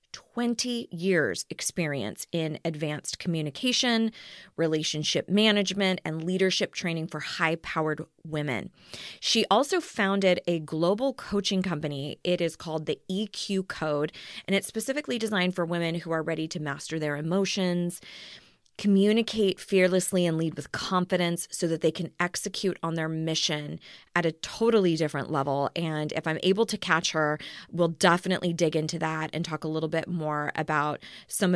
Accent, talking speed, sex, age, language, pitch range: American, 150 wpm, female, 30-49, English, 160-200 Hz